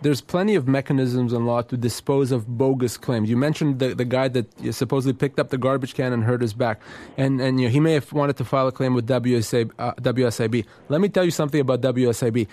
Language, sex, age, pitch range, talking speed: English, male, 20-39, 125-155 Hz, 235 wpm